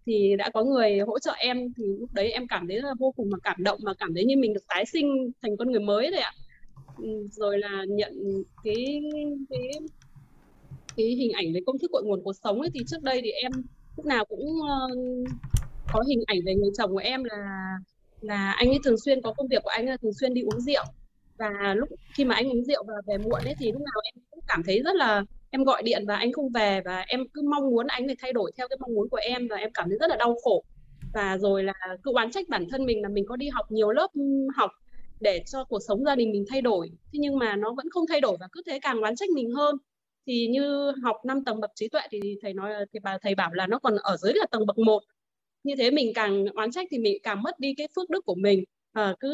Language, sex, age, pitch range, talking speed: Vietnamese, female, 20-39, 205-275 Hz, 270 wpm